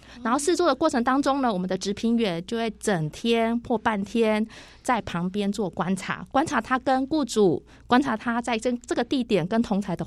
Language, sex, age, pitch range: Chinese, female, 20-39, 195-250 Hz